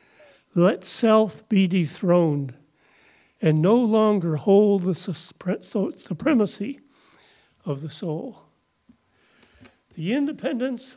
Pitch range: 160-205 Hz